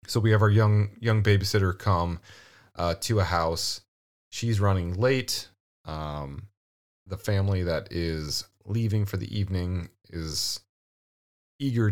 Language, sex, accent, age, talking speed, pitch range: English, male, American, 30-49, 130 wpm, 85-105 Hz